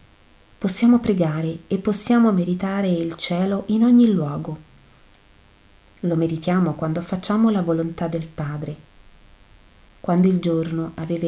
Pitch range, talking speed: 155-210 Hz, 115 wpm